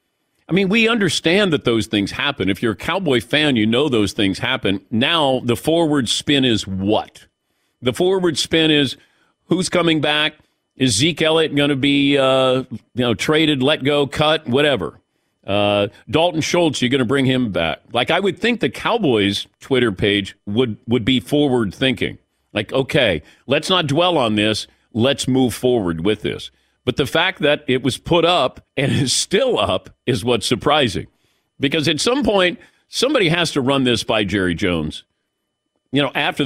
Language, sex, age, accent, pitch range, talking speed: English, male, 50-69, American, 115-155 Hz, 180 wpm